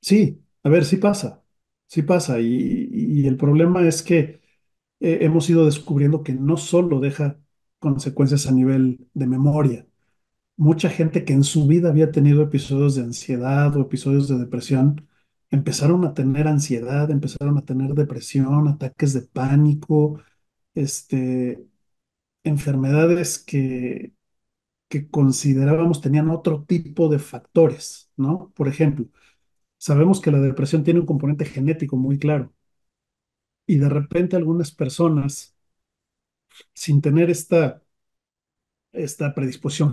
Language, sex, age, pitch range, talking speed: Spanish, male, 40-59, 135-160 Hz, 125 wpm